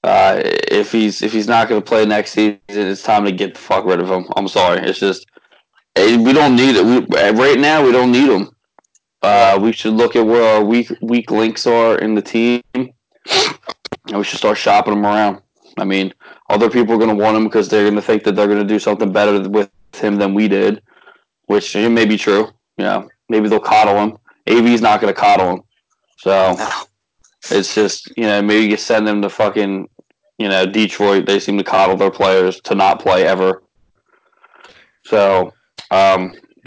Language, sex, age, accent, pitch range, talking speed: English, male, 20-39, American, 100-115 Hz, 210 wpm